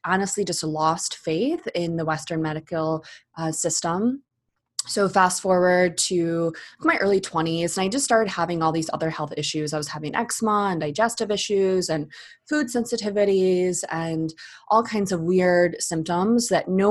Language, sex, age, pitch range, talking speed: English, female, 20-39, 160-195 Hz, 160 wpm